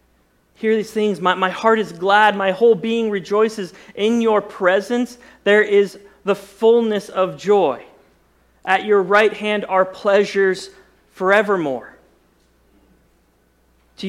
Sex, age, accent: male, 40-59, American